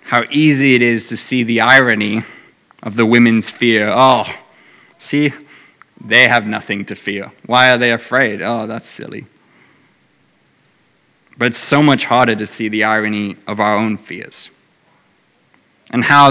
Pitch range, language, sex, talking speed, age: 110-135 Hz, English, male, 150 wpm, 20-39